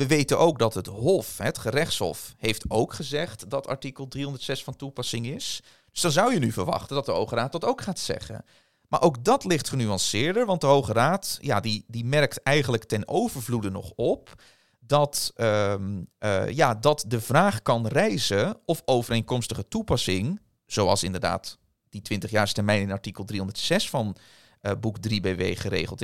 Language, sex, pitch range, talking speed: English, male, 105-155 Hz, 170 wpm